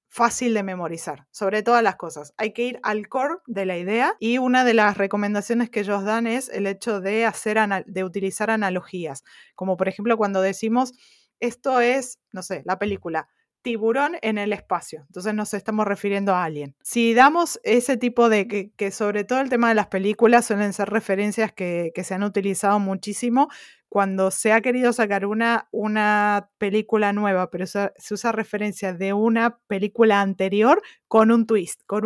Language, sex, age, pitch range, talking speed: Spanish, female, 20-39, 195-230 Hz, 180 wpm